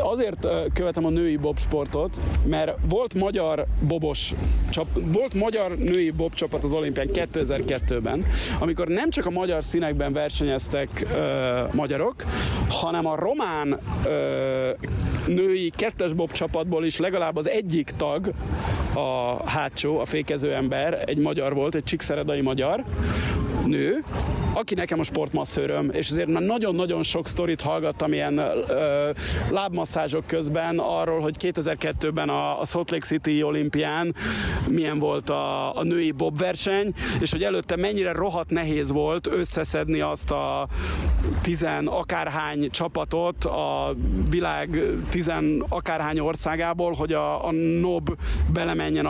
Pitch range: 135-170 Hz